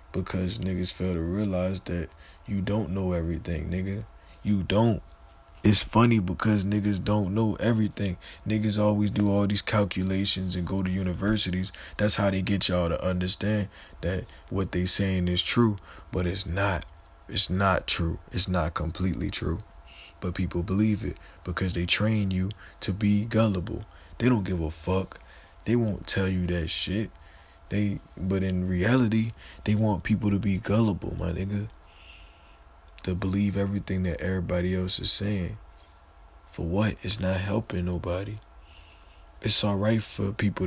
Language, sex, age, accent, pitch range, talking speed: English, male, 20-39, American, 85-100 Hz, 155 wpm